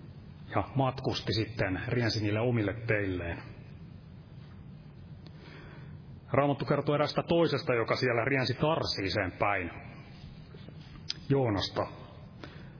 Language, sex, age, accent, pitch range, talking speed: Finnish, male, 30-49, native, 110-140 Hz, 75 wpm